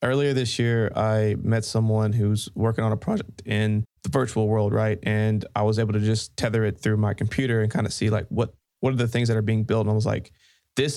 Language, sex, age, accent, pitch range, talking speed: English, male, 20-39, American, 110-120 Hz, 250 wpm